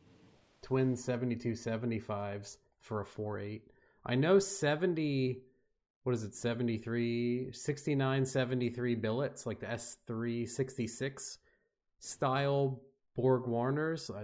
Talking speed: 95 wpm